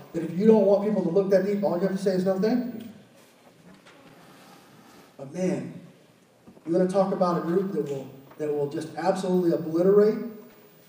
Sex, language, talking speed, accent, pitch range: male, English, 180 wpm, American, 165-200 Hz